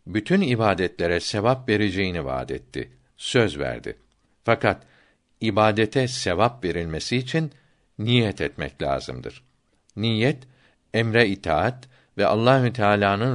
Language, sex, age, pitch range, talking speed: Turkish, male, 60-79, 95-130 Hz, 100 wpm